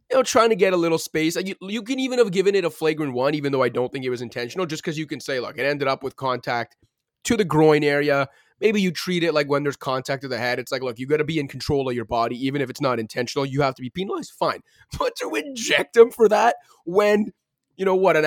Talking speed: 285 wpm